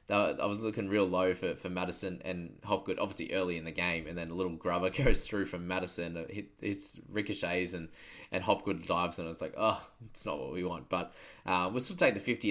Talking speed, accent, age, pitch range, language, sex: 225 wpm, Australian, 20-39, 90-110 Hz, English, male